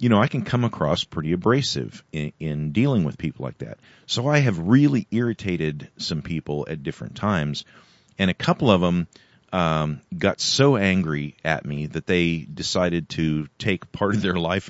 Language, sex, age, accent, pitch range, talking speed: English, male, 40-59, American, 75-105 Hz, 185 wpm